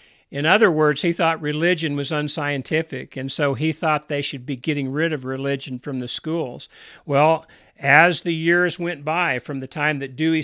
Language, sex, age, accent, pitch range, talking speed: English, male, 50-69, American, 140-165 Hz, 190 wpm